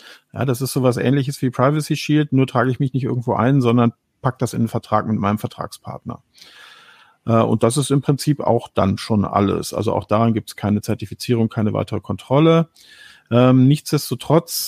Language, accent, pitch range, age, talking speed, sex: German, German, 115-140 Hz, 50-69, 180 wpm, male